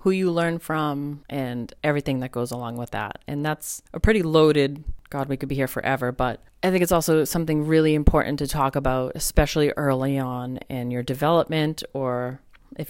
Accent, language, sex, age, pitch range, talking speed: American, English, female, 30-49, 130-155 Hz, 190 wpm